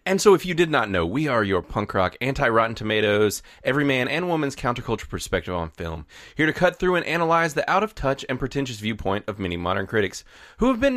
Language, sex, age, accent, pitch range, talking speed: English, male, 20-39, American, 105-145 Hz, 220 wpm